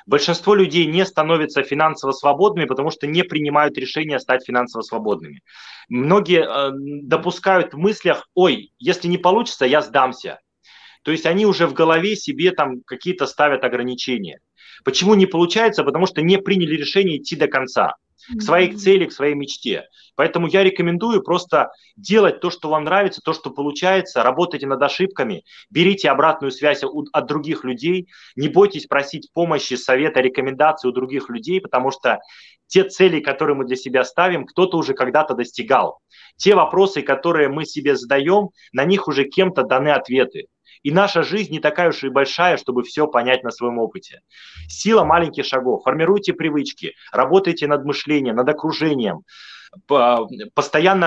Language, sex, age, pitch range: Russian, male, 30-49, 140-185 Hz